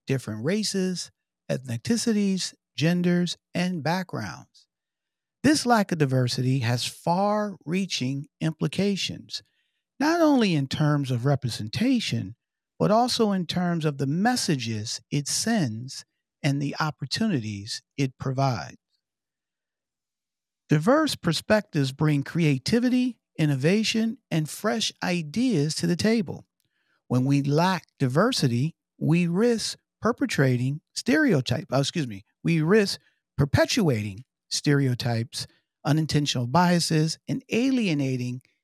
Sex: male